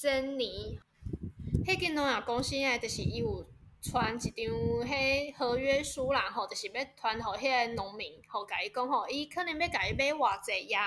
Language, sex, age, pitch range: Chinese, female, 10-29, 245-345 Hz